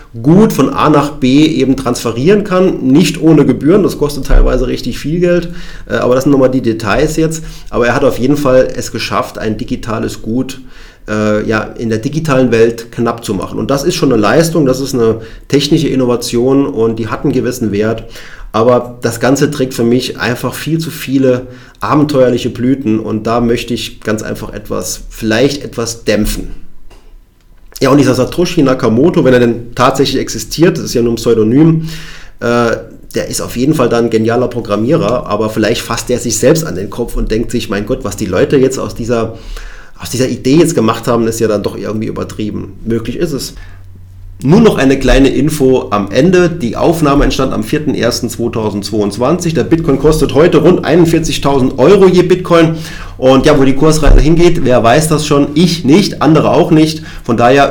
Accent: German